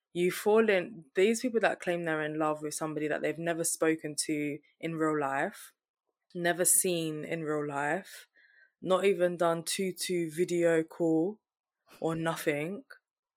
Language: English